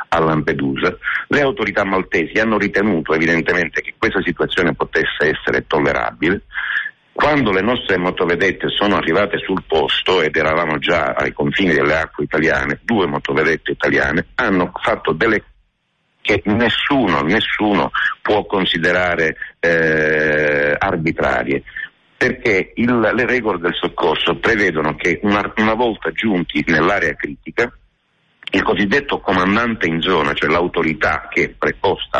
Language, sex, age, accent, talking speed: Italian, male, 60-79, native, 125 wpm